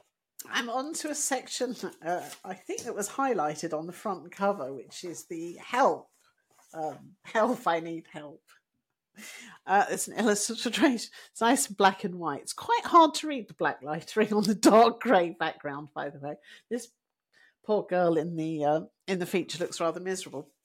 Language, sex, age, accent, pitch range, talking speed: English, female, 50-69, British, 160-240 Hz, 185 wpm